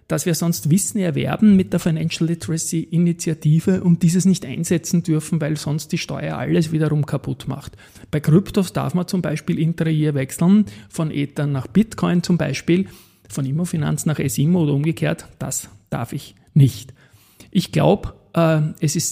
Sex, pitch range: male, 145-175 Hz